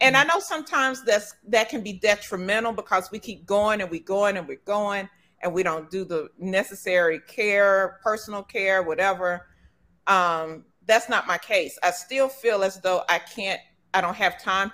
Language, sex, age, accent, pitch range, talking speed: English, female, 40-59, American, 180-235 Hz, 180 wpm